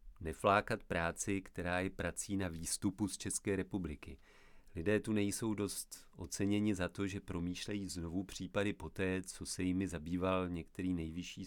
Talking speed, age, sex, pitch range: 145 wpm, 40-59, male, 85-95 Hz